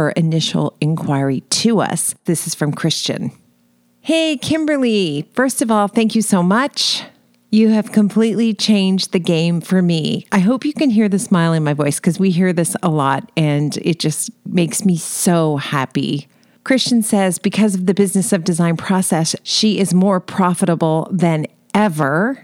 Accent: American